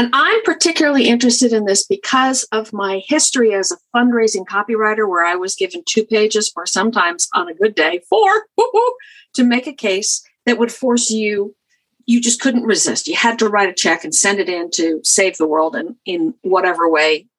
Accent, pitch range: American, 200-265 Hz